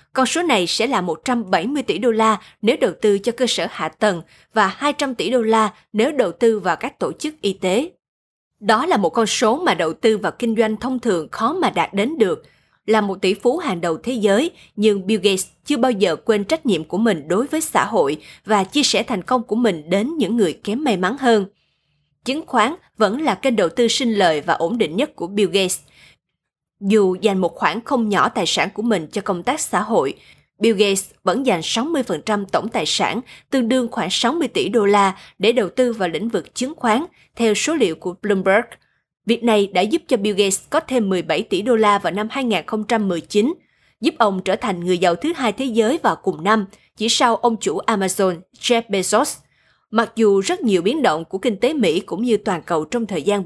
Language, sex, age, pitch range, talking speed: Vietnamese, female, 20-39, 195-245 Hz, 220 wpm